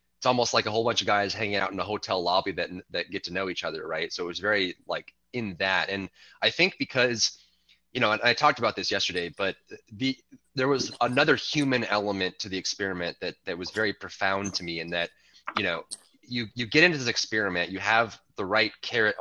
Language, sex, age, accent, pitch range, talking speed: English, male, 20-39, American, 90-120 Hz, 230 wpm